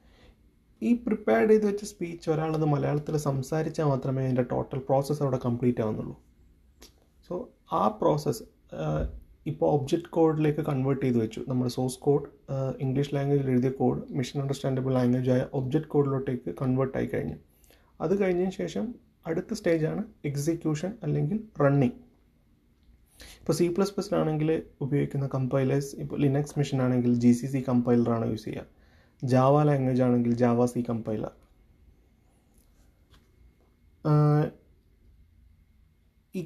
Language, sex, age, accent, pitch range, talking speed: Malayalam, male, 30-49, native, 120-150 Hz, 115 wpm